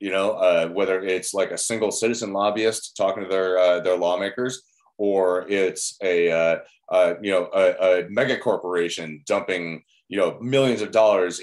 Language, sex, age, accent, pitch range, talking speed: English, male, 30-49, American, 90-110 Hz, 175 wpm